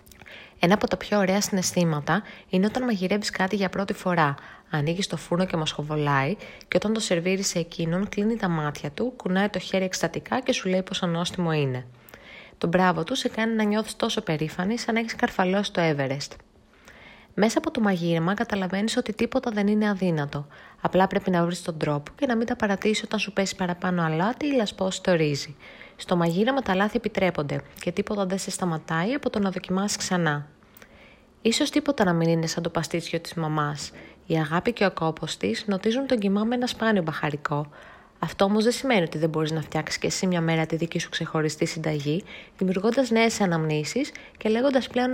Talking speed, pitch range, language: 195 wpm, 165-220 Hz, Greek